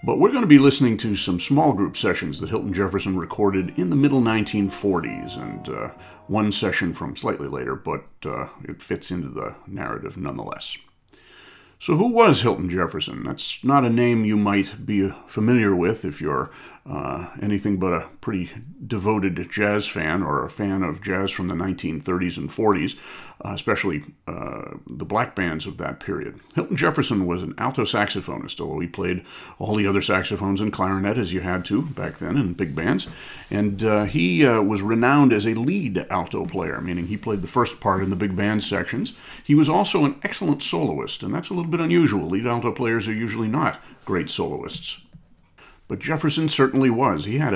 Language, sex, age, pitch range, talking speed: English, male, 40-59, 95-125 Hz, 190 wpm